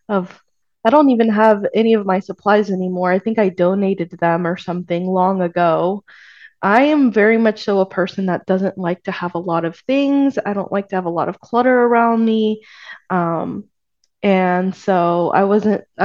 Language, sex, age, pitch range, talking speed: English, female, 20-39, 175-210 Hz, 190 wpm